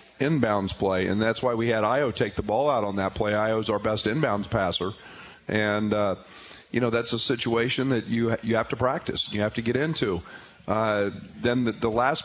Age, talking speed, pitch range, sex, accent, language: 40-59, 210 wpm, 100-120 Hz, male, American, English